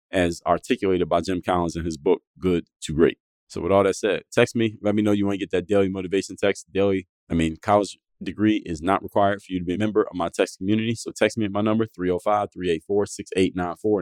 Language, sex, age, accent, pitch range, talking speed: English, male, 20-39, American, 90-110 Hz, 230 wpm